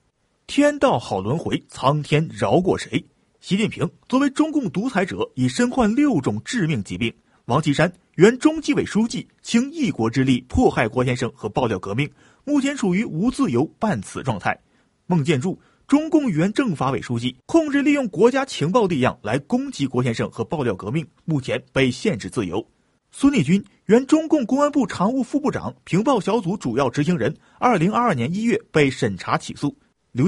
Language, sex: Chinese, male